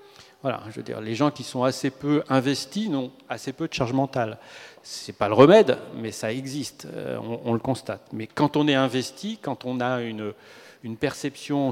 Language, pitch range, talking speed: French, 120-145 Hz, 205 wpm